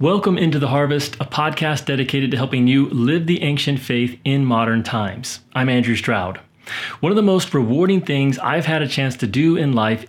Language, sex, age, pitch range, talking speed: English, male, 30-49, 120-155 Hz, 200 wpm